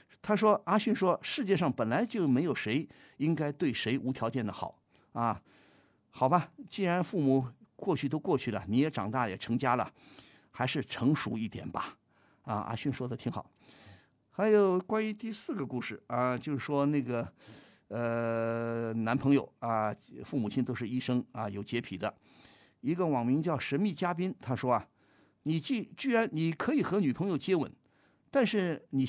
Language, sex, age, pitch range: Chinese, male, 50-69, 115-150 Hz